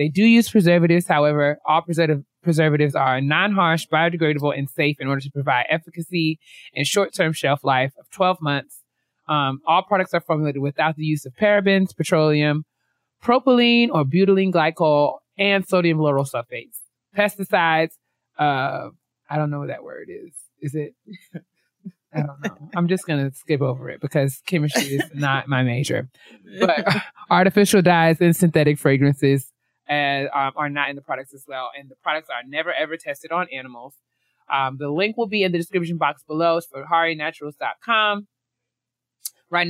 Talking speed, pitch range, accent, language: 165 wpm, 145-185 Hz, American, English